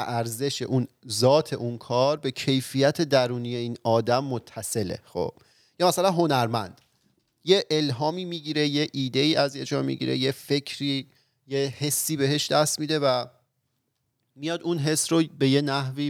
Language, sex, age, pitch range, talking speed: Persian, male, 40-59, 115-140 Hz, 140 wpm